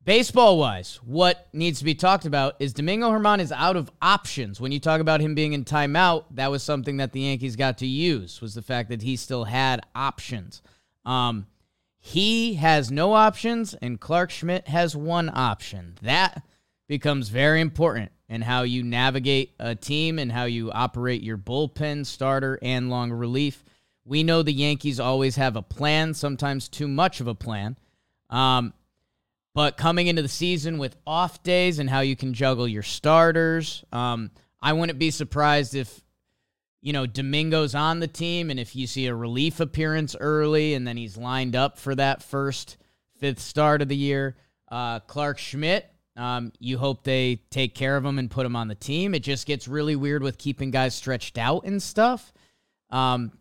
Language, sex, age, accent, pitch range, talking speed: English, male, 20-39, American, 125-160 Hz, 185 wpm